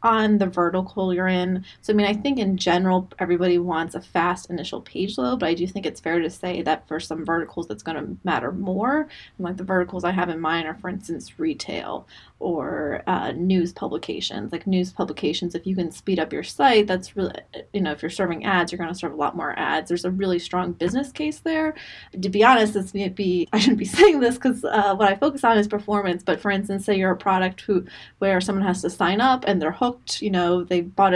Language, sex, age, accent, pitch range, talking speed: English, female, 20-39, American, 180-210 Hz, 240 wpm